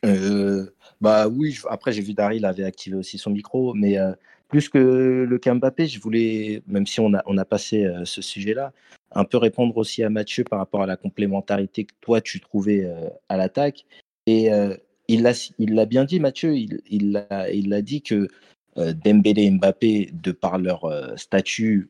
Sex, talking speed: male, 205 wpm